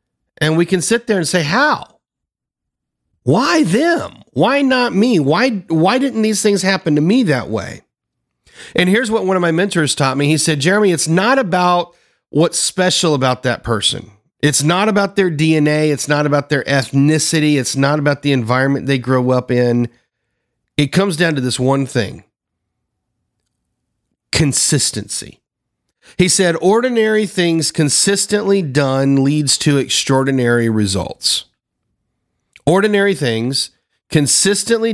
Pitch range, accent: 135-200 Hz, American